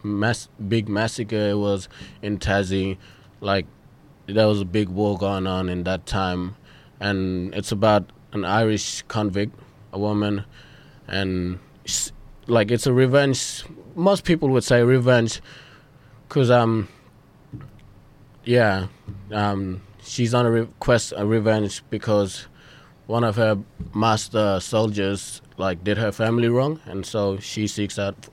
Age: 20-39